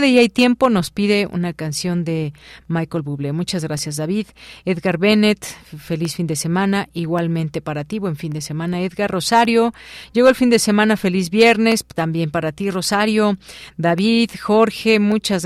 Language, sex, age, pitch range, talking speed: Spanish, female, 40-59, 160-195 Hz, 165 wpm